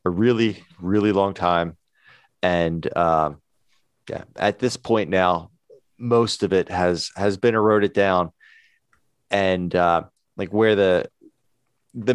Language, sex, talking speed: English, male, 130 wpm